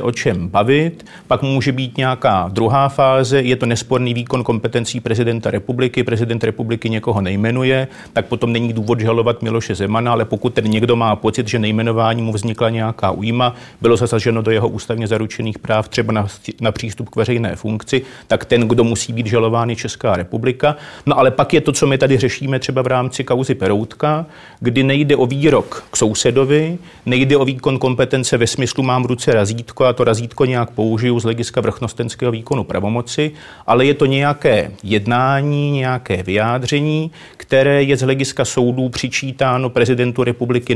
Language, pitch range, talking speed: Czech, 115-130 Hz, 170 wpm